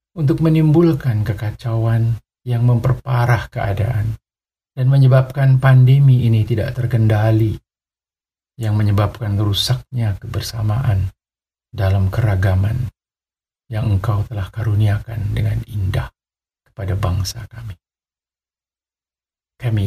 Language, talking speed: Indonesian, 85 wpm